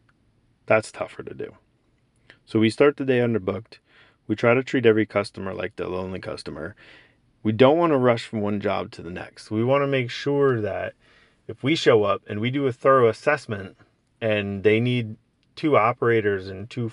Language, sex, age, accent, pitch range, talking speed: English, male, 30-49, American, 110-130 Hz, 190 wpm